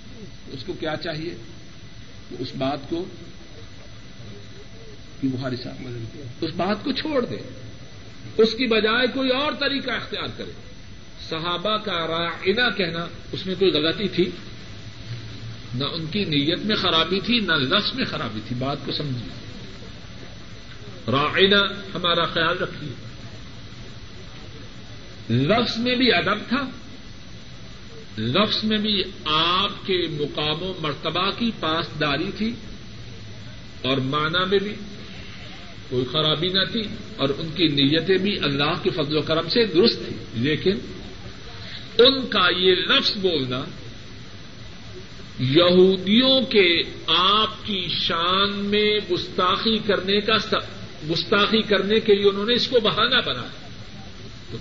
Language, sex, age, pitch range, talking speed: Urdu, male, 50-69, 120-200 Hz, 125 wpm